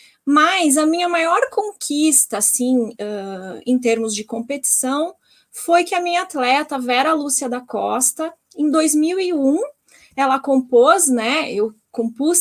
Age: 20-39